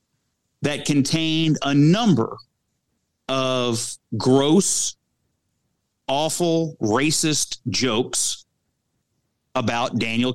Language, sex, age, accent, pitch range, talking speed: English, male, 40-59, American, 125-165 Hz, 65 wpm